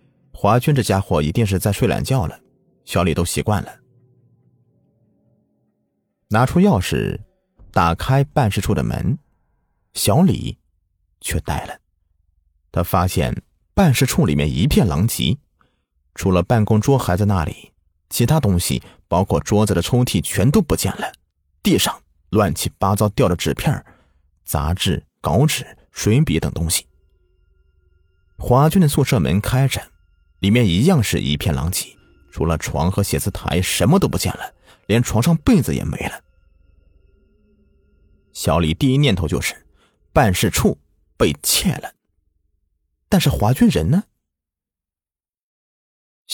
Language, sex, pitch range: Chinese, male, 75-110 Hz